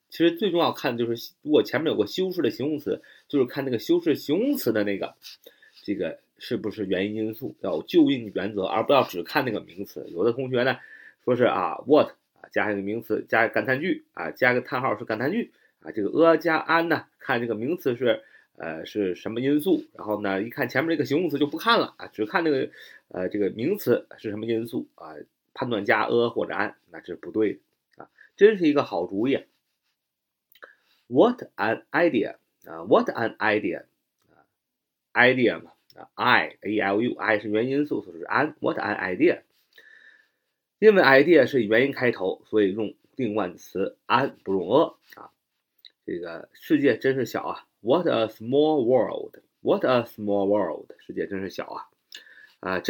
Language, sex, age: Chinese, male, 30-49